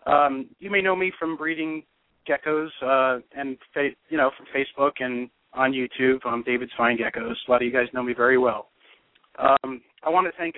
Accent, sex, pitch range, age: American, male, 130-160 Hz, 40-59